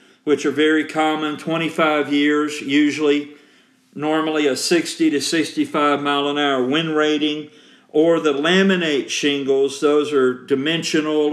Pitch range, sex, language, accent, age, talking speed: 135-155 Hz, male, English, American, 50-69, 125 wpm